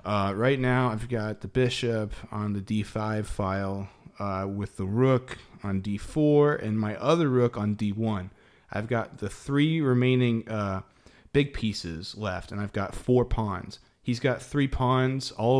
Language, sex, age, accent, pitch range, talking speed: English, male, 30-49, American, 95-125 Hz, 160 wpm